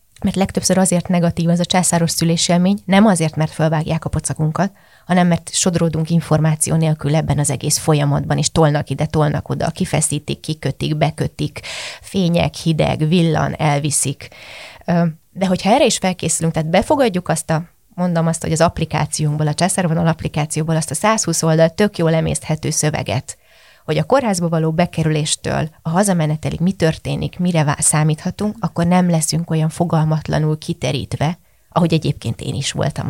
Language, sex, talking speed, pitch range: Hungarian, female, 150 wpm, 150-175 Hz